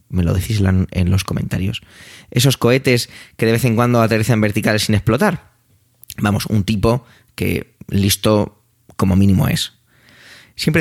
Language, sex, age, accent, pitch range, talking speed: Spanish, male, 20-39, Spanish, 100-125 Hz, 145 wpm